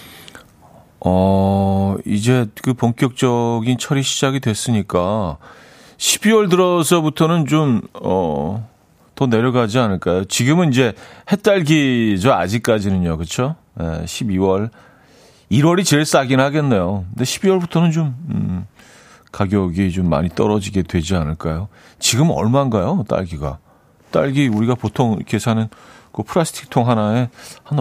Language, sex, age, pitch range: Korean, male, 40-59, 95-135 Hz